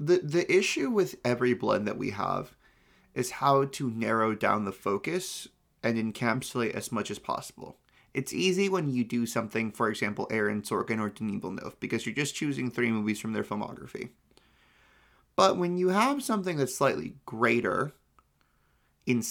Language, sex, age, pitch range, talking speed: English, male, 30-49, 110-145 Hz, 165 wpm